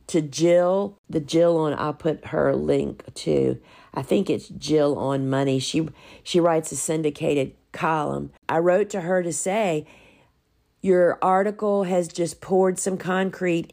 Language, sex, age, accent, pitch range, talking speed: English, female, 50-69, American, 145-175 Hz, 155 wpm